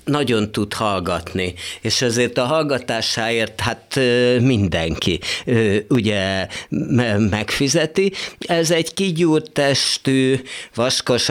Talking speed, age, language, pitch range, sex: 85 wpm, 50-69, Hungarian, 95-125 Hz, male